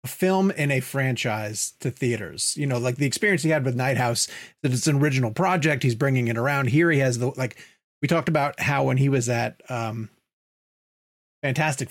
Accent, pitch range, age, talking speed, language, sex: American, 120-150 Hz, 30-49, 200 wpm, English, male